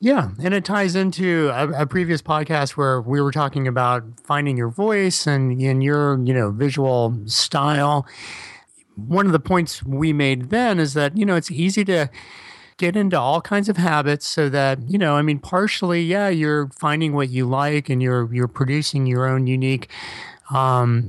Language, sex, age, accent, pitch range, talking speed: English, male, 40-59, American, 130-160 Hz, 185 wpm